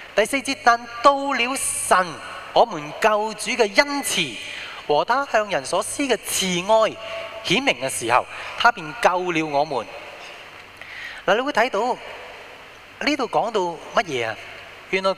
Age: 20-39